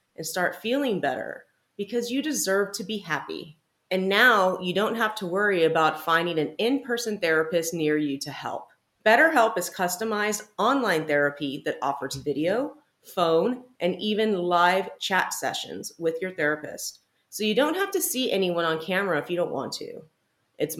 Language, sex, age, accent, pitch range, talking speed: English, female, 30-49, American, 155-210 Hz, 165 wpm